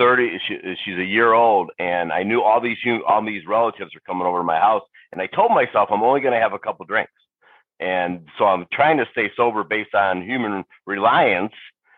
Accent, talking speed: American, 215 wpm